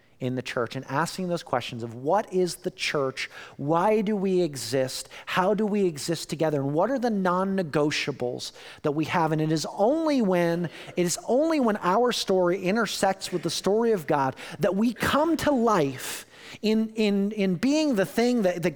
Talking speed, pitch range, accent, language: 190 wpm, 145-215 Hz, American, English